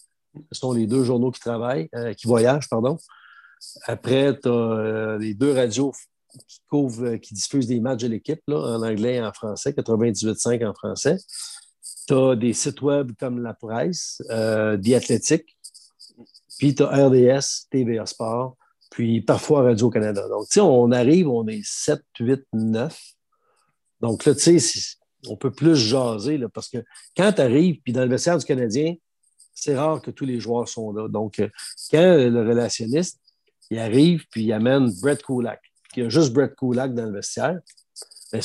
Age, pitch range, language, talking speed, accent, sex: 50-69, 115-145 Hz, French, 175 wpm, Canadian, male